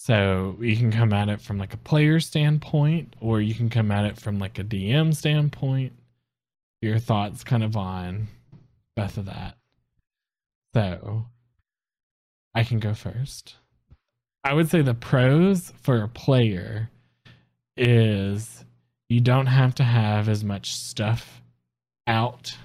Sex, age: male, 20-39